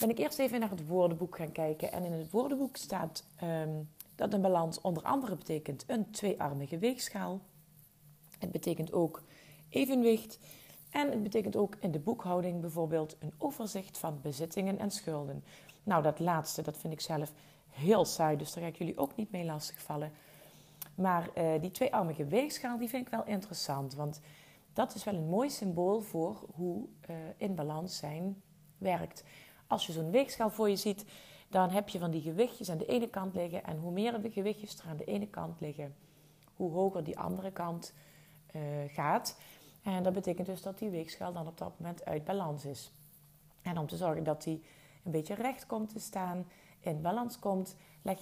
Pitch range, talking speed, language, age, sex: 155-200 Hz, 190 wpm, Dutch, 40-59, female